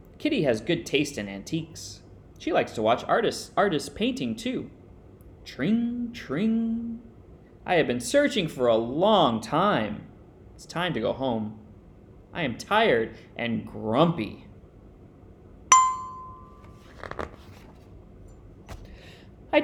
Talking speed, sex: 105 wpm, male